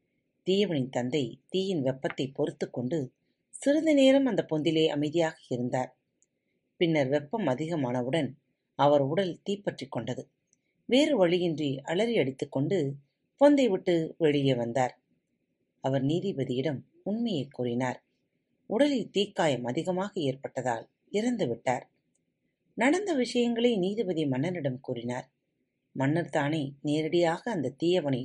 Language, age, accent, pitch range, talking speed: Tamil, 30-49, native, 135-195 Hz, 100 wpm